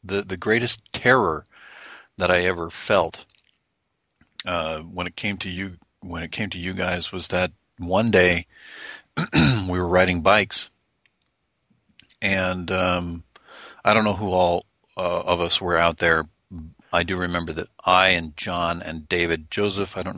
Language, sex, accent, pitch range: English, male, American, 85-100 Hz